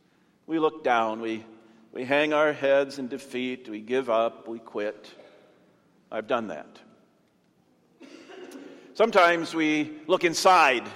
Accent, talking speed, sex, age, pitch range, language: American, 120 wpm, male, 50-69, 140-200 Hz, English